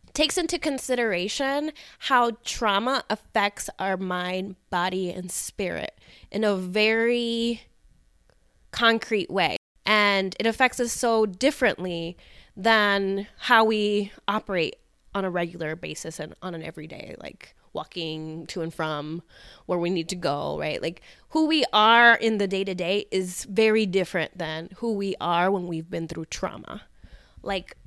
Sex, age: female, 20-39